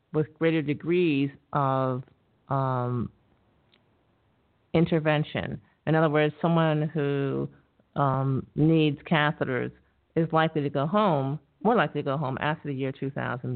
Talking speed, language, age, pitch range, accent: 125 wpm, English, 50-69, 135-165 Hz, American